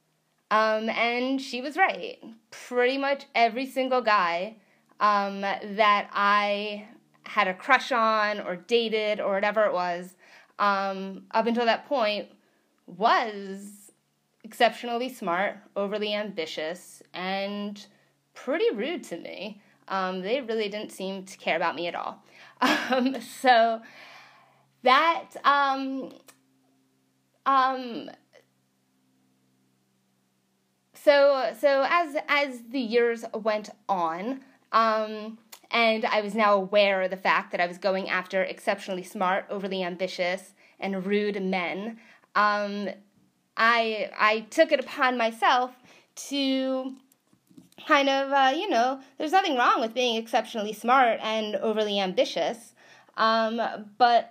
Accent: American